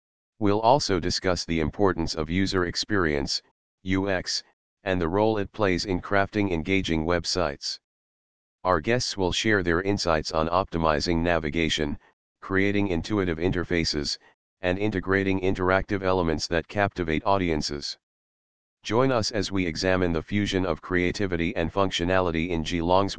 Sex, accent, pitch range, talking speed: male, American, 80-100 Hz, 130 wpm